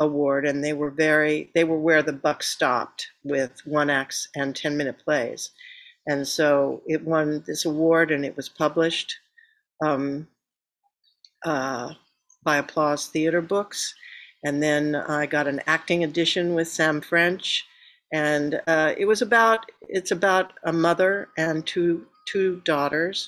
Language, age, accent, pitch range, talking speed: English, 60-79, American, 150-185 Hz, 145 wpm